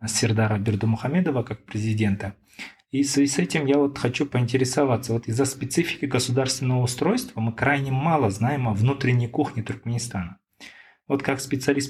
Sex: male